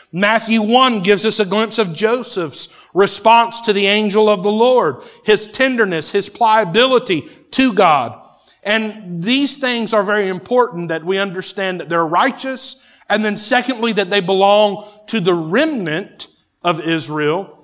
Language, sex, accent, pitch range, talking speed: English, male, American, 165-220 Hz, 150 wpm